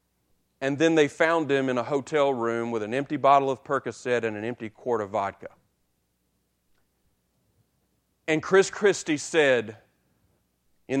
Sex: male